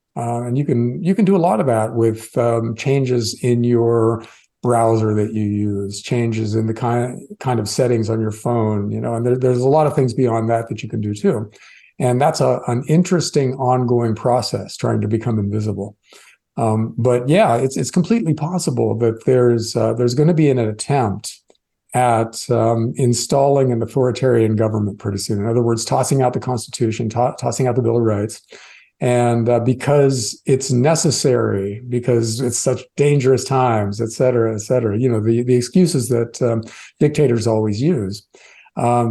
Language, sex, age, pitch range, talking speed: English, male, 50-69, 115-130 Hz, 185 wpm